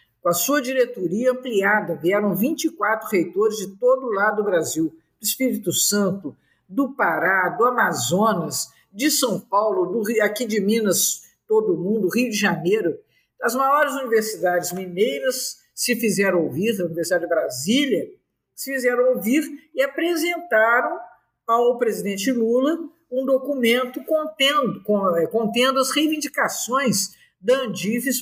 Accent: Brazilian